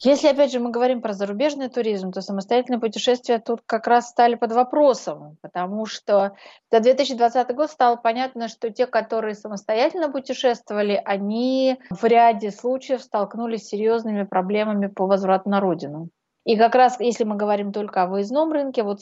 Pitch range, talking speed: 195-240 Hz, 165 wpm